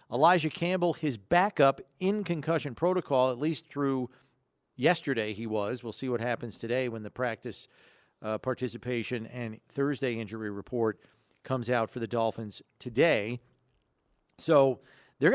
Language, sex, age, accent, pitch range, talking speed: English, male, 40-59, American, 120-160 Hz, 135 wpm